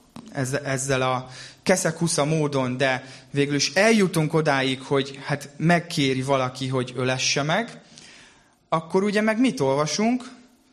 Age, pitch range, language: 20-39, 135-185 Hz, Hungarian